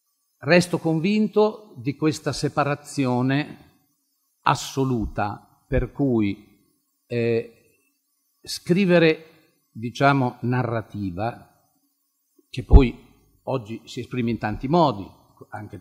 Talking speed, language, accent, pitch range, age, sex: 80 wpm, Italian, native, 110-155 Hz, 50-69, male